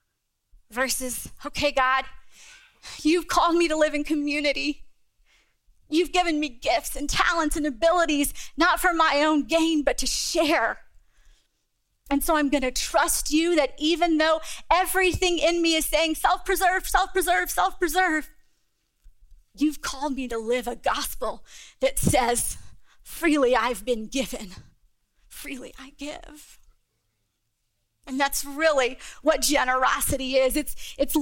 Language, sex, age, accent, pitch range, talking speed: English, female, 30-49, American, 260-315 Hz, 130 wpm